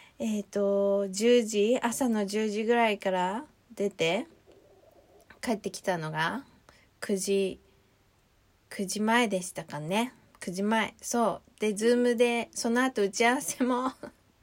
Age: 20-39